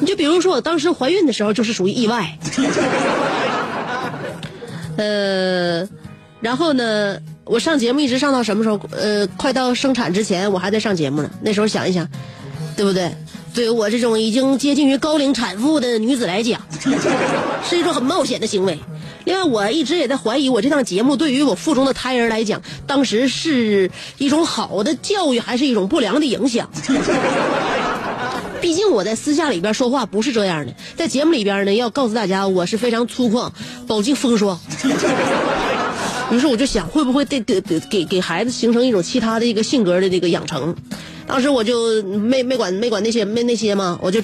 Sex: female